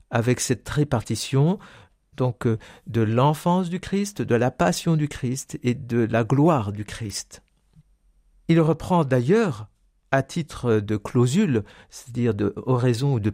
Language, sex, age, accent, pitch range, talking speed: French, male, 50-69, French, 120-165 Hz, 135 wpm